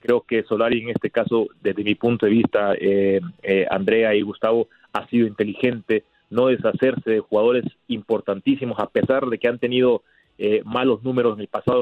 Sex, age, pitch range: male, 30-49, 110-135 Hz